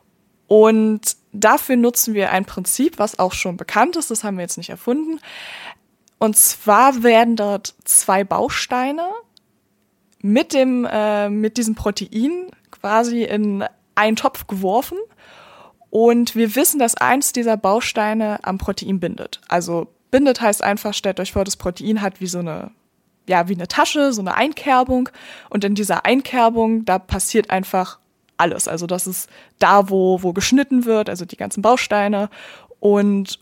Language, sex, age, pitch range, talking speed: German, female, 20-39, 195-245 Hz, 155 wpm